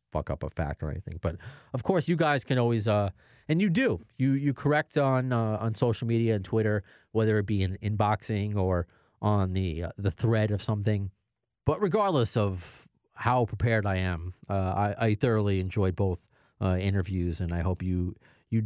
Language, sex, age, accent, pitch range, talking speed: English, male, 30-49, American, 95-125 Hz, 190 wpm